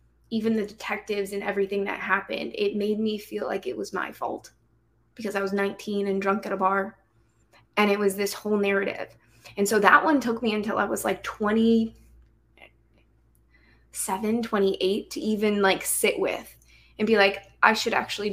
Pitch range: 195-220 Hz